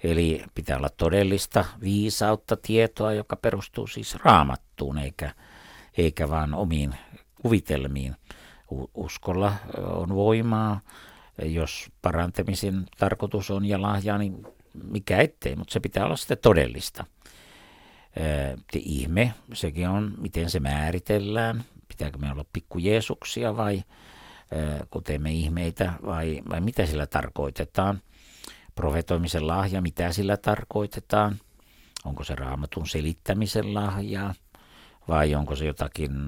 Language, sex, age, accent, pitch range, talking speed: Finnish, male, 60-79, native, 80-105 Hz, 110 wpm